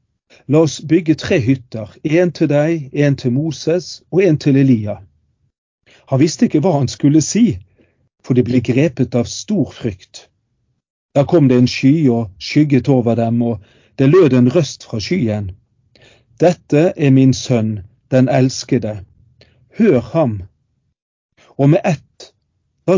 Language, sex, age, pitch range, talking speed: English, male, 50-69, 115-145 Hz, 150 wpm